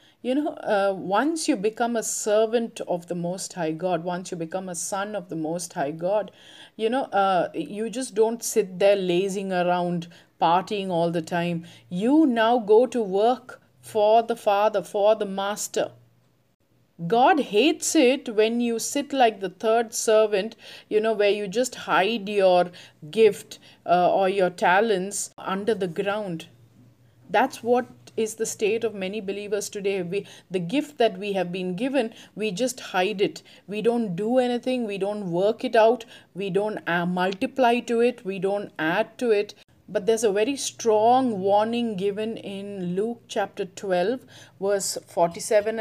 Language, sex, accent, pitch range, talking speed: English, female, Indian, 185-230 Hz, 165 wpm